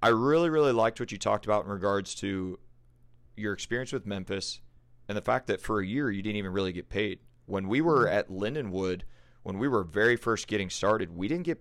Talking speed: 220 wpm